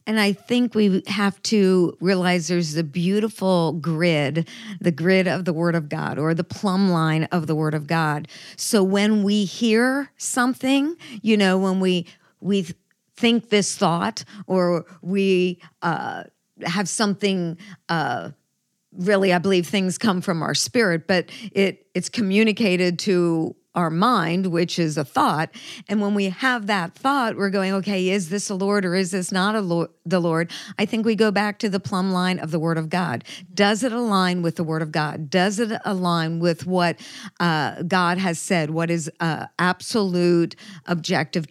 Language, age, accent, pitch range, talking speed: English, 50-69, American, 170-205 Hz, 175 wpm